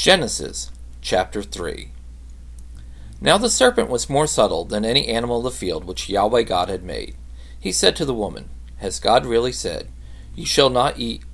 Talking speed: 175 wpm